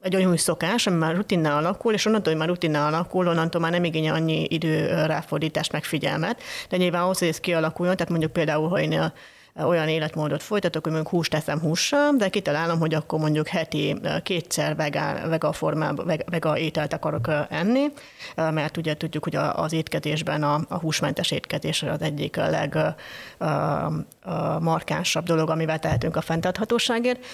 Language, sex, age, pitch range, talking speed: Hungarian, female, 30-49, 155-185 Hz, 155 wpm